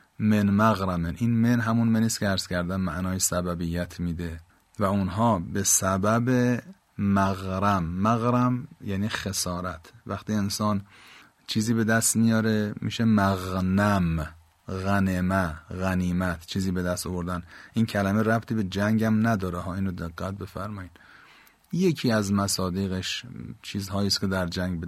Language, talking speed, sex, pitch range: Persian, 125 wpm, male, 95-110 Hz